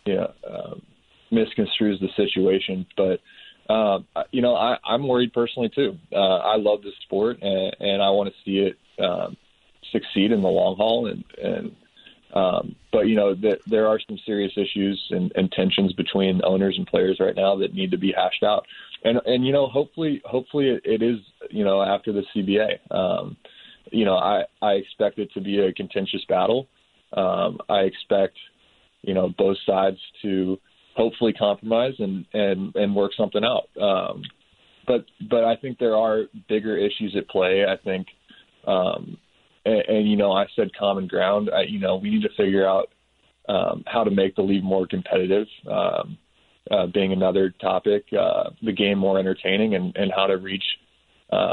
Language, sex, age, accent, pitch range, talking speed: English, male, 20-39, American, 95-110 Hz, 180 wpm